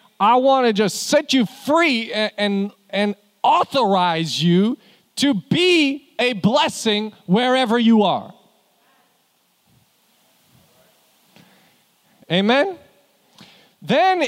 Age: 40-59